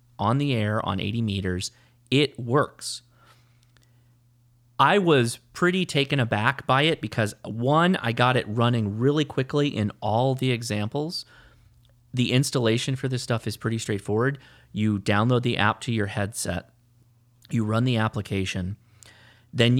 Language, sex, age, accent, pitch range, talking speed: English, male, 30-49, American, 100-125 Hz, 140 wpm